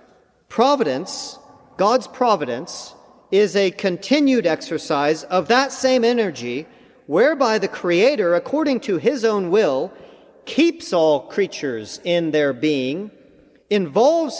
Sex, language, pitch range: male, English, 170-240 Hz